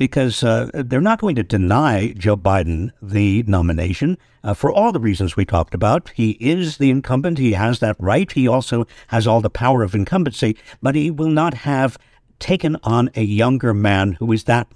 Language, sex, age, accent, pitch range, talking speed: English, male, 60-79, American, 110-170 Hz, 195 wpm